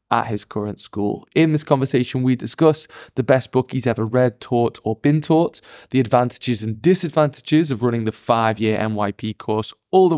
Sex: male